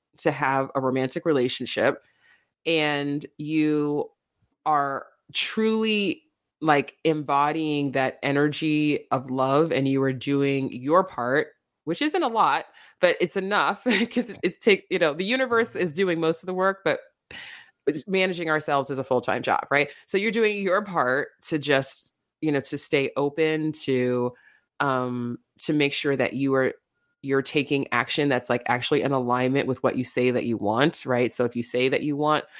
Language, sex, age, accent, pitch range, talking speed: English, female, 20-39, American, 130-160 Hz, 170 wpm